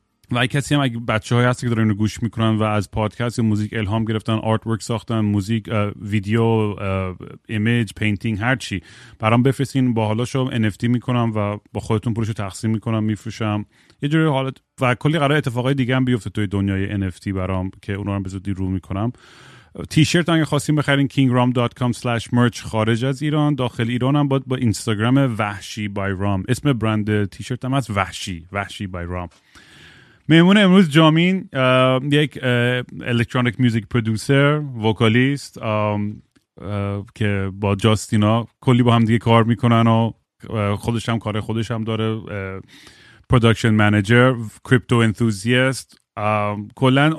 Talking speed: 145 wpm